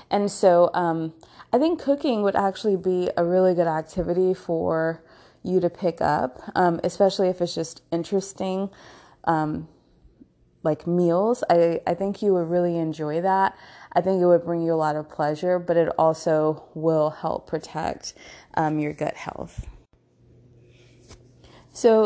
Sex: female